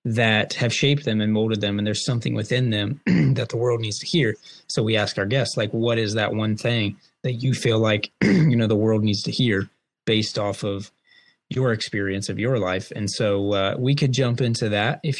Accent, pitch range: American, 110-130 Hz